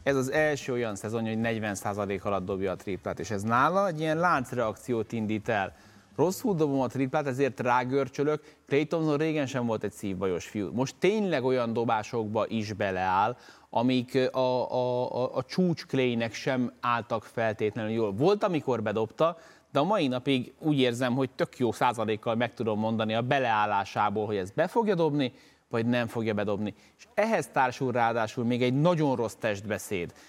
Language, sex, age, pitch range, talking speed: Hungarian, male, 30-49, 115-140 Hz, 170 wpm